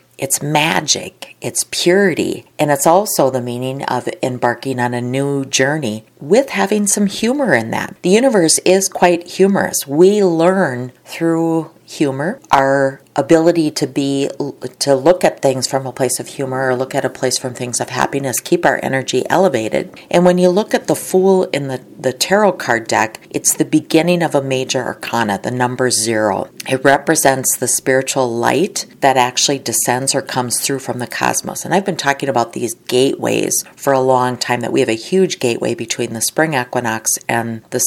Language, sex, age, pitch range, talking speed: English, female, 40-59, 125-160 Hz, 185 wpm